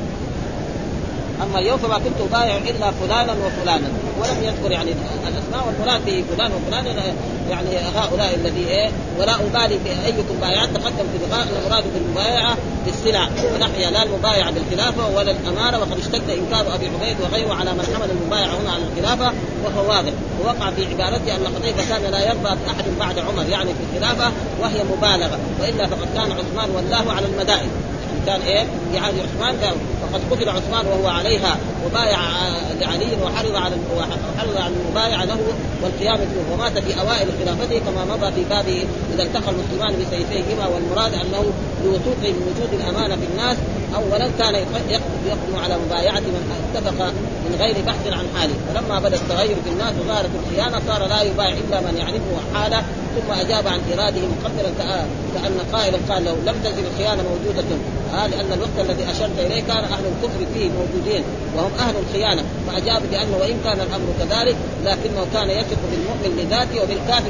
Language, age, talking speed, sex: Arabic, 30-49, 155 wpm, female